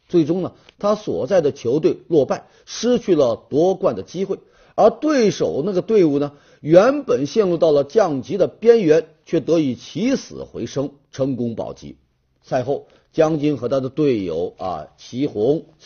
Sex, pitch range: male, 140-195 Hz